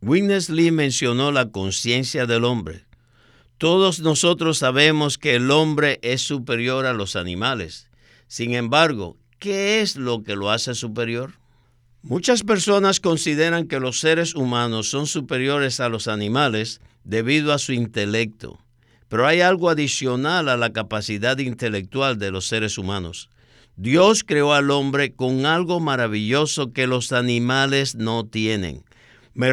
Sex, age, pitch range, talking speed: male, 60-79, 120-165 Hz, 140 wpm